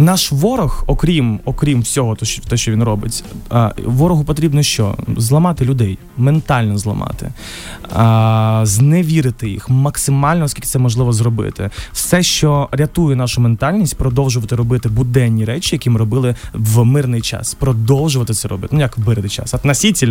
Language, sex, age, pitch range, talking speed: Ukrainian, male, 20-39, 115-165 Hz, 135 wpm